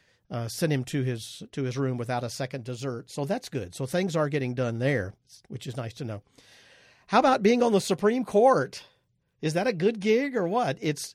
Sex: male